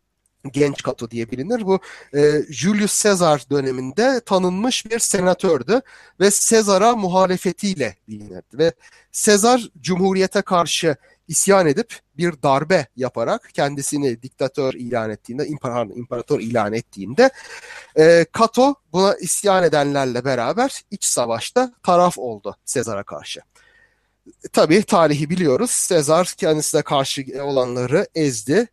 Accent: native